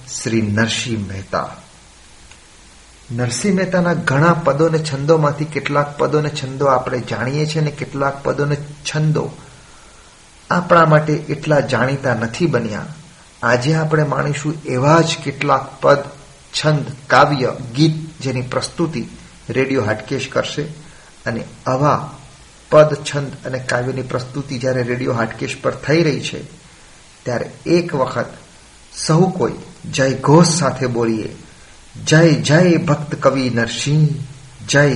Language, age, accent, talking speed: Gujarati, 40-59, native, 105 wpm